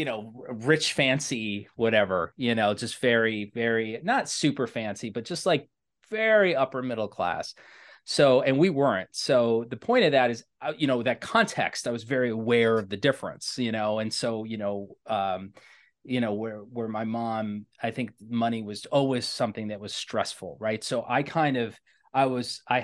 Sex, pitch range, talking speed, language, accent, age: male, 110-130 Hz, 185 wpm, English, American, 30-49